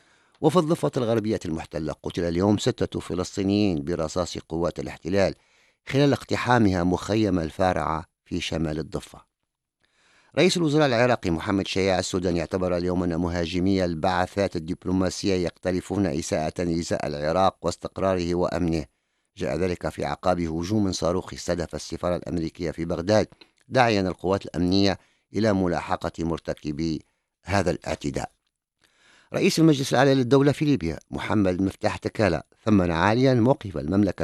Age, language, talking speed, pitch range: 50-69, English, 115 wpm, 80-100 Hz